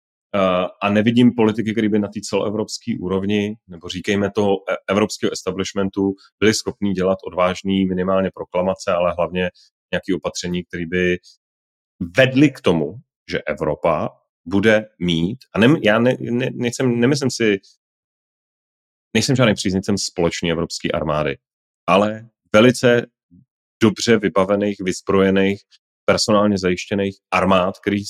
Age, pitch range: 30-49, 95-120 Hz